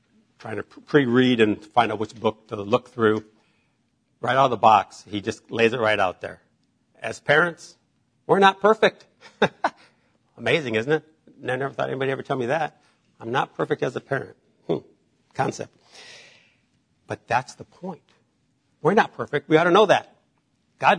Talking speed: 175 wpm